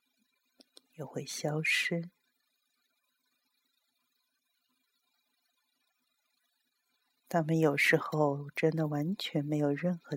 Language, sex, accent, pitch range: Chinese, female, native, 150-245 Hz